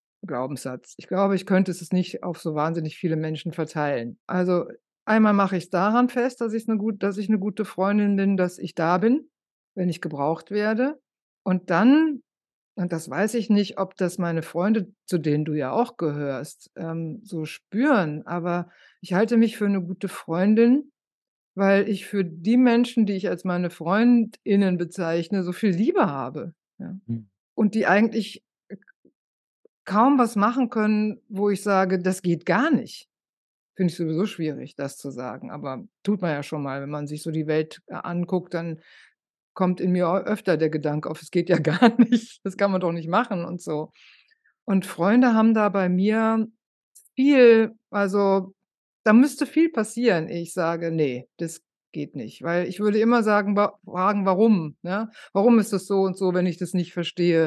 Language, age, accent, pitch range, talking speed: German, 60-79, German, 170-215 Hz, 175 wpm